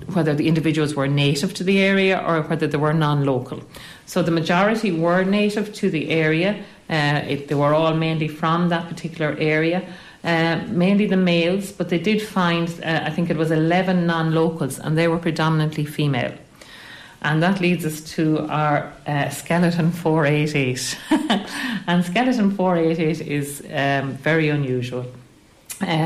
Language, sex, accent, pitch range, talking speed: English, female, Irish, 145-175 Hz, 155 wpm